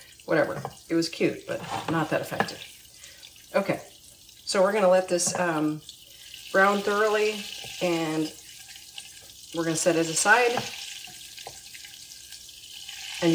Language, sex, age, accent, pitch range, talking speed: English, female, 40-59, American, 155-200 Hz, 110 wpm